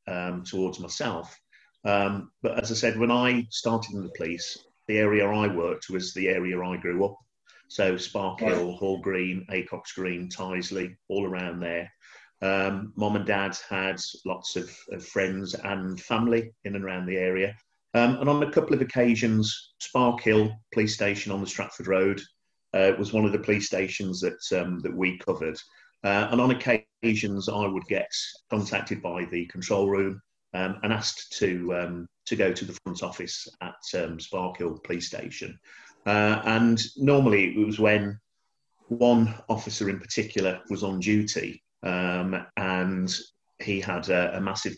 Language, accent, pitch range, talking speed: English, British, 90-105 Hz, 170 wpm